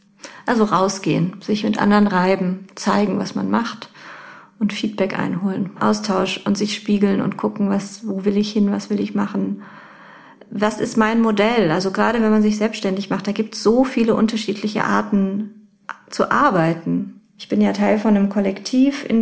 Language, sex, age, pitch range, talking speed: German, female, 30-49, 190-215 Hz, 175 wpm